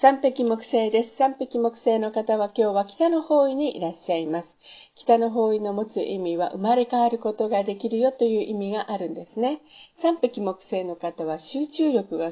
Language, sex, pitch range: Japanese, female, 195-265 Hz